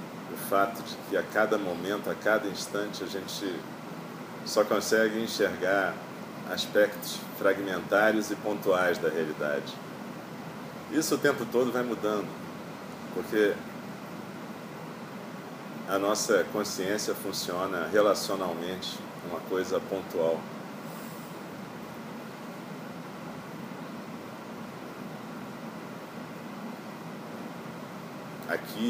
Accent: Brazilian